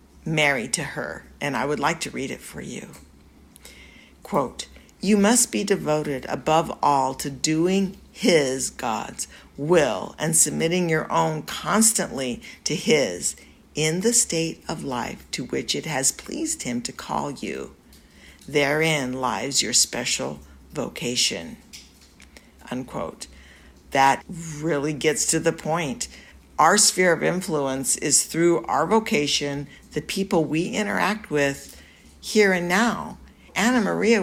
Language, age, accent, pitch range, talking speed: English, 50-69, American, 140-190 Hz, 130 wpm